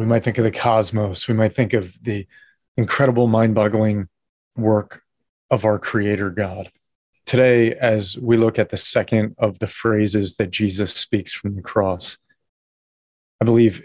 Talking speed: 155 wpm